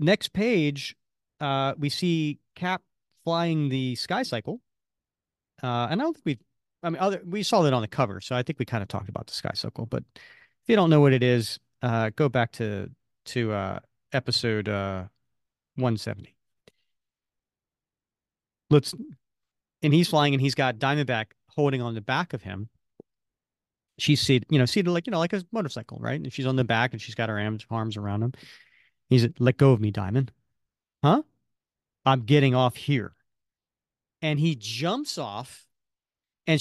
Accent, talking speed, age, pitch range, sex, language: American, 180 wpm, 40-59, 120-185 Hz, male, English